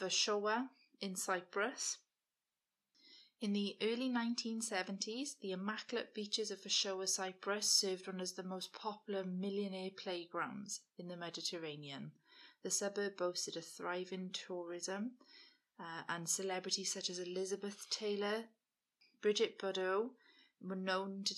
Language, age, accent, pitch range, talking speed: English, 30-49, British, 180-205 Hz, 120 wpm